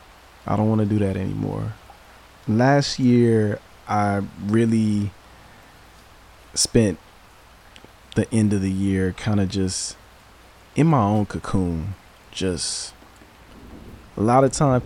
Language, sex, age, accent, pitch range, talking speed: English, male, 20-39, American, 90-110 Hz, 115 wpm